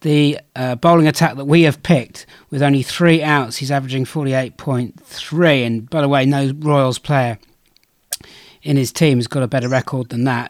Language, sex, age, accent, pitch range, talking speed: English, male, 40-59, British, 130-155 Hz, 185 wpm